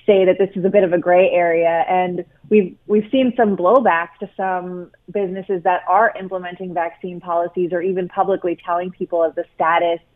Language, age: English, 30-49